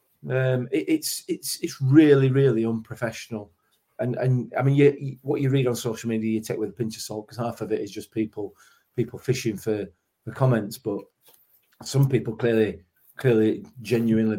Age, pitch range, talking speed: 40-59, 110-130 Hz, 190 wpm